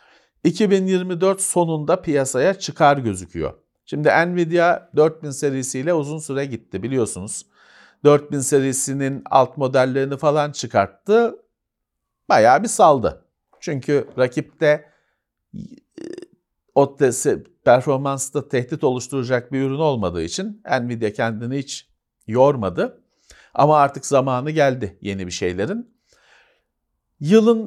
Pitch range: 120-180 Hz